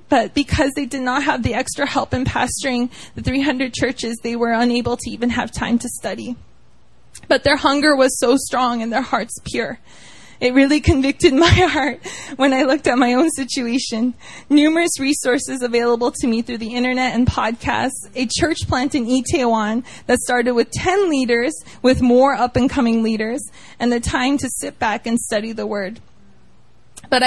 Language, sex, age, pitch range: English, female, 20-39, 235-270 Hz